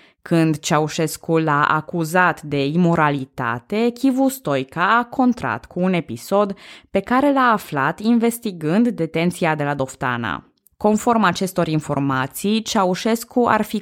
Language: Romanian